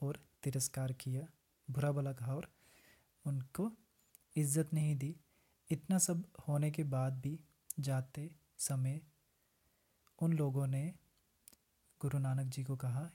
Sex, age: male, 30-49